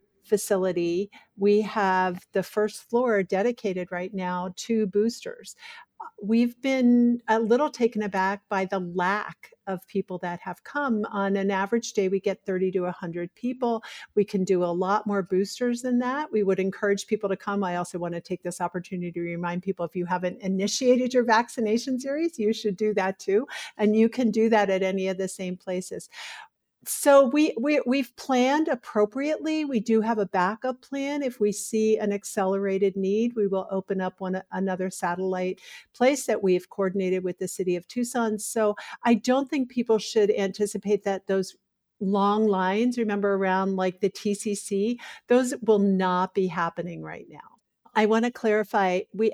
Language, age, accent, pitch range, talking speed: English, 50-69, American, 190-230 Hz, 180 wpm